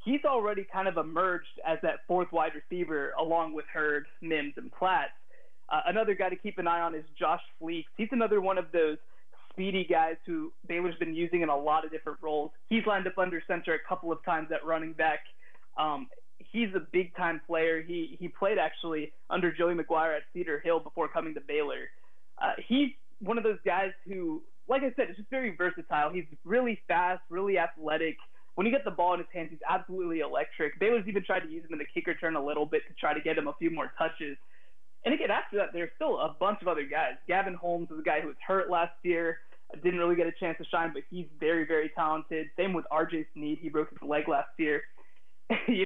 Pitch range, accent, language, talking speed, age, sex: 160-195 Hz, American, English, 220 wpm, 20-39, male